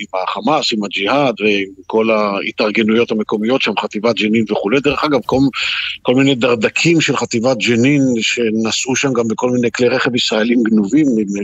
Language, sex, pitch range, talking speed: Hebrew, male, 110-140 Hz, 165 wpm